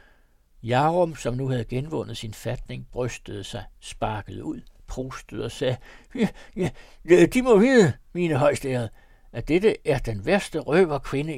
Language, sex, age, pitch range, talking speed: Danish, male, 60-79, 125-185 Hz, 150 wpm